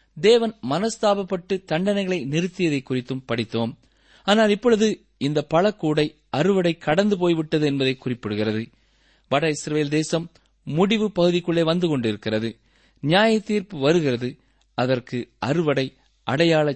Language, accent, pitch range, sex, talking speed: Tamil, native, 130-180 Hz, male, 100 wpm